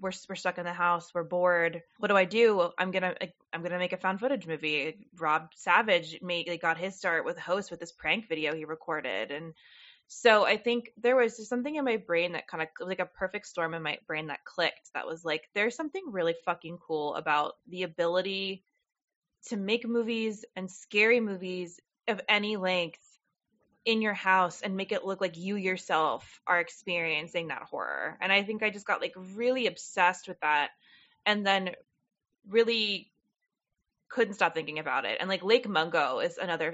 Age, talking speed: 20-39, 195 wpm